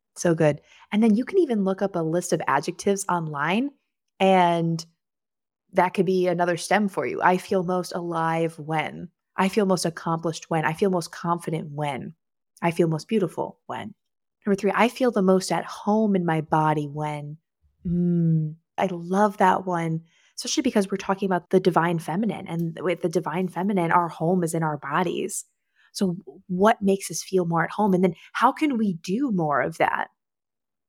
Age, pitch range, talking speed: 20-39, 165-205 Hz, 185 wpm